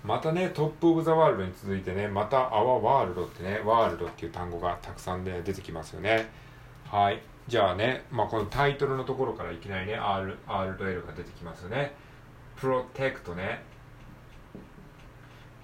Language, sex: Japanese, male